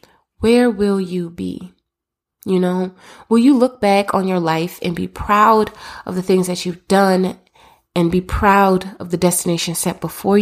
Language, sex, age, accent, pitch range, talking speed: English, female, 20-39, American, 175-205 Hz, 175 wpm